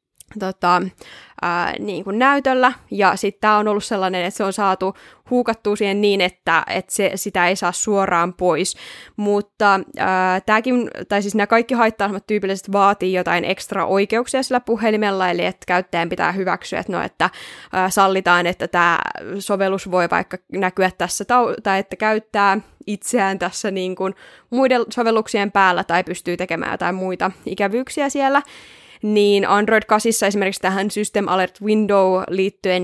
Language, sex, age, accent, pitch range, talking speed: Finnish, female, 20-39, native, 185-225 Hz, 145 wpm